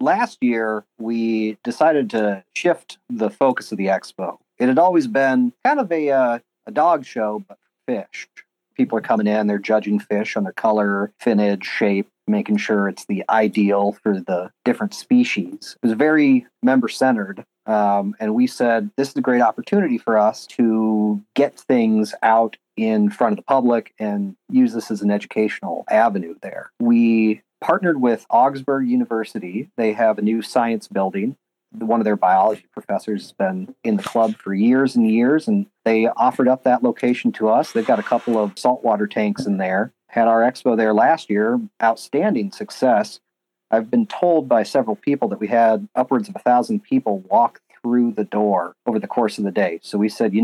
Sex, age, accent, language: male, 40-59, American, English